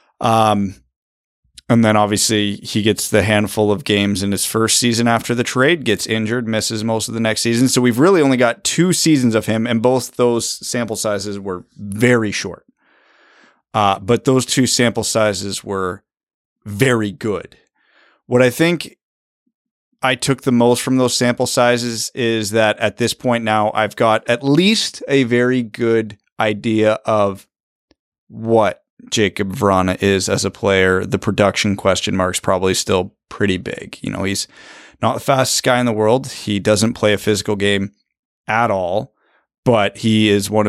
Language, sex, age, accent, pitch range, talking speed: English, male, 30-49, American, 100-120 Hz, 170 wpm